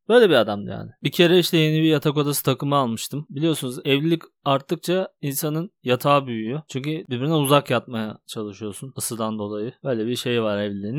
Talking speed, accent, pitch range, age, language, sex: 170 wpm, native, 135-195 Hz, 30-49, Turkish, male